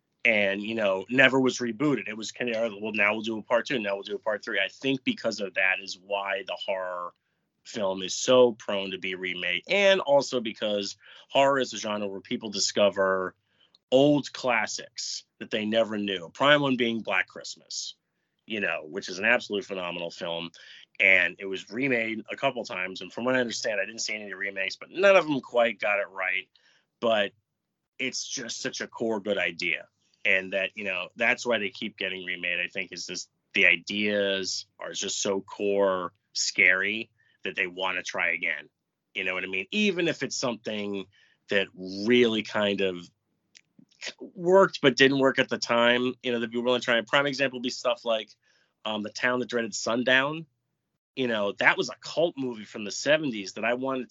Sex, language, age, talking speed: male, English, 30-49, 200 wpm